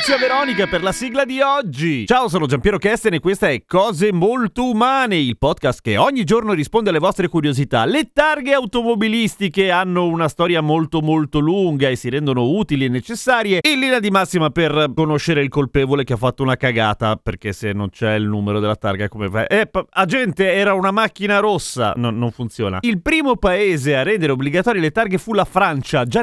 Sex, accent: male, native